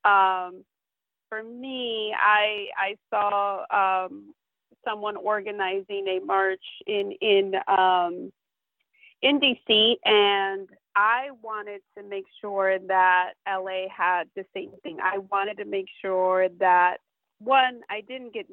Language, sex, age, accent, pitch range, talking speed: English, female, 30-49, American, 180-215 Hz, 125 wpm